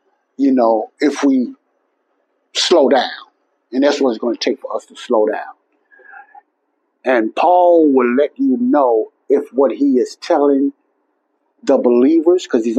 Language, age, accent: English, 60-79, American